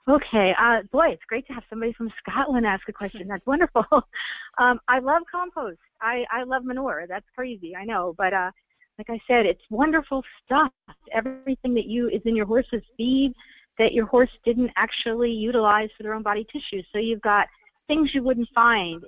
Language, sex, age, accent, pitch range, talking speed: English, female, 40-59, American, 200-250 Hz, 190 wpm